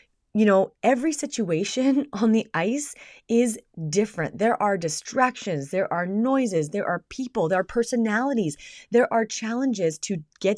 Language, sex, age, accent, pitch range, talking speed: English, female, 30-49, American, 165-245 Hz, 145 wpm